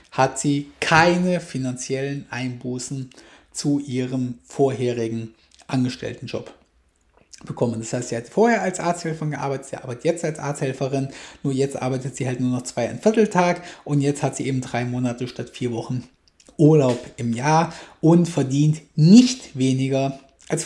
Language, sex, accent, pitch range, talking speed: German, male, German, 125-170 Hz, 150 wpm